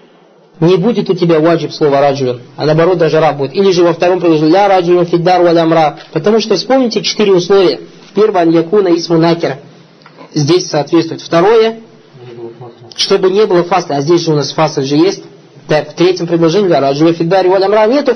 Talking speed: 175 wpm